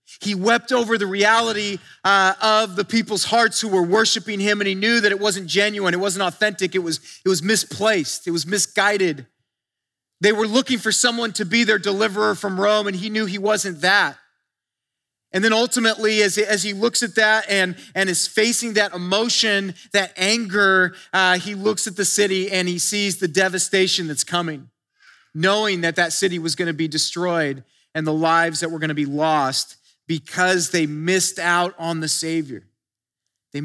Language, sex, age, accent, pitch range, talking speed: English, male, 30-49, American, 165-210 Hz, 185 wpm